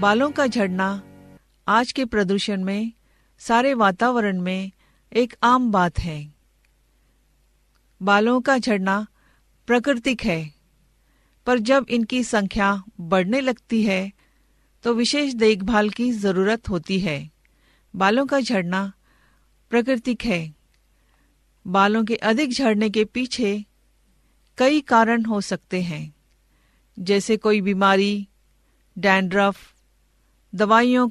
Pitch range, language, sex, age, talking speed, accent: 190-235 Hz, Hindi, female, 40-59, 105 wpm, native